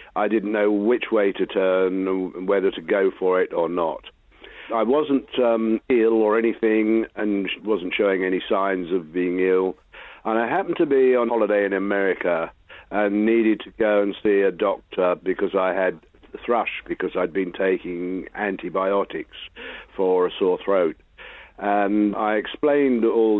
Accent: British